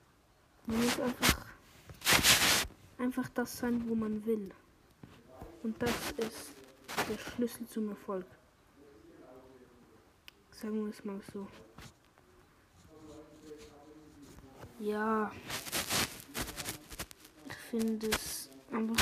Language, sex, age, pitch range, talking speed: German, female, 20-39, 225-260 Hz, 80 wpm